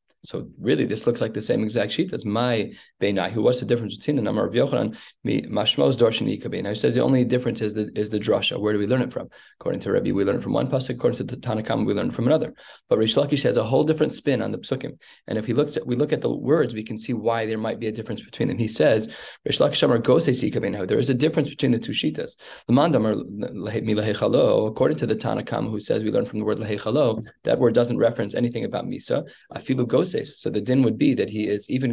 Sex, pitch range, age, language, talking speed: male, 115-135 Hz, 20-39, English, 235 wpm